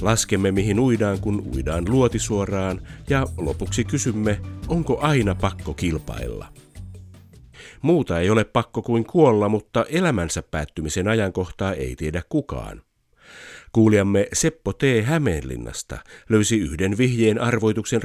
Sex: male